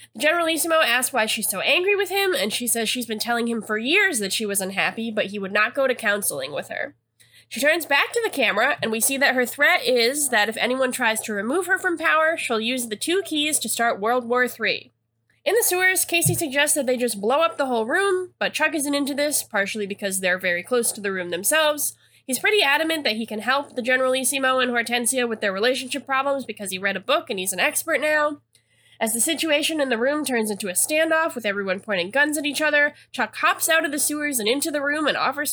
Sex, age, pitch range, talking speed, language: female, 10-29, 215-300 Hz, 245 wpm, English